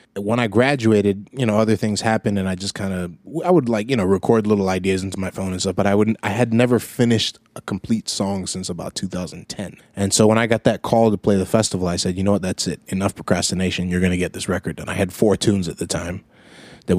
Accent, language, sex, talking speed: American, English, male, 260 wpm